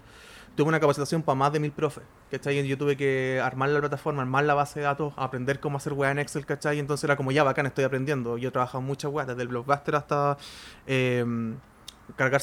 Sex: male